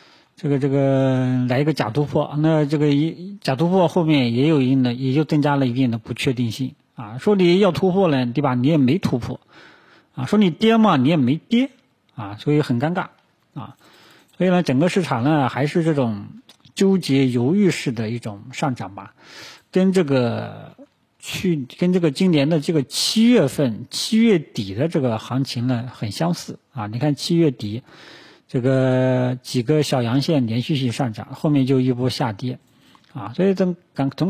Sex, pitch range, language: male, 125-160 Hz, Chinese